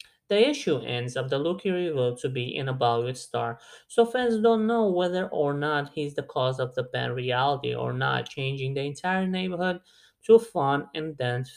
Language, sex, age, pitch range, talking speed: English, male, 20-39, 130-185 Hz, 195 wpm